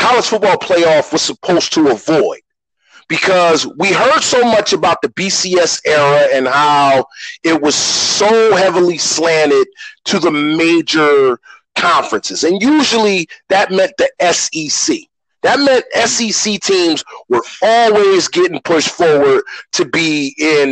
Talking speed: 130 wpm